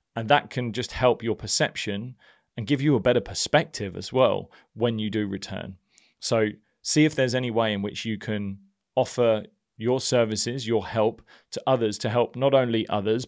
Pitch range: 105-125 Hz